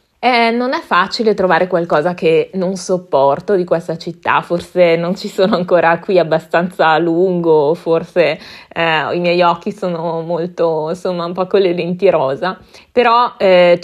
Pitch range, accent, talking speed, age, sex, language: 160-195 Hz, native, 160 wpm, 20-39, female, Italian